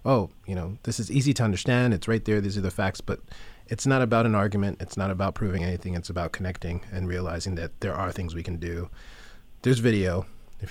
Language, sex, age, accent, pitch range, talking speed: English, male, 30-49, American, 85-105 Hz, 230 wpm